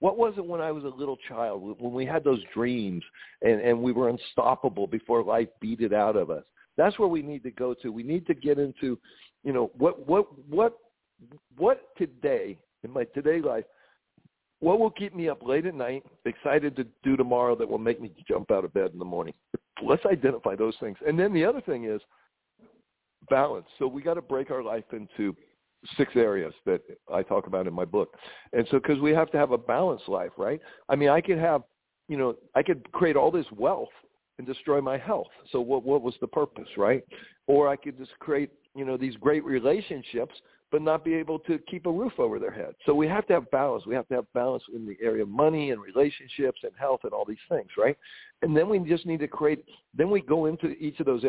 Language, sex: English, male